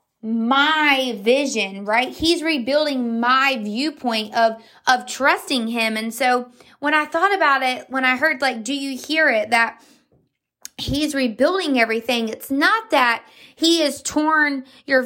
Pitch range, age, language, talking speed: 235-290 Hz, 20-39, English, 145 wpm